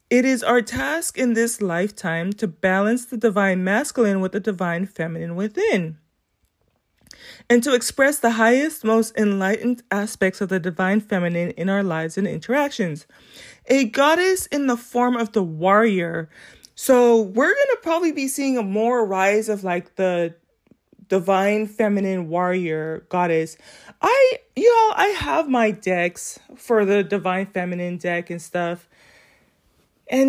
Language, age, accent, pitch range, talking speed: English, 20-39, American, 190-245 Hz, 145 wpm